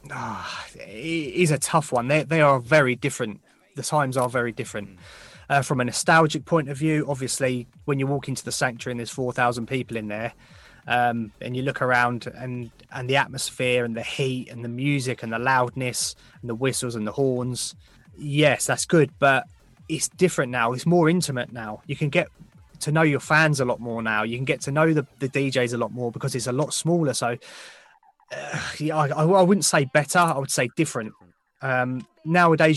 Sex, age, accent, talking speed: male, 20-39, British, 205 wpm